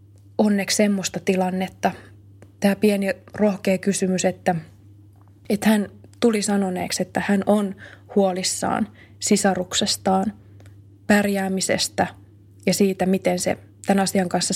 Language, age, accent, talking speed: Finnish, 20-39, native, 105 wpm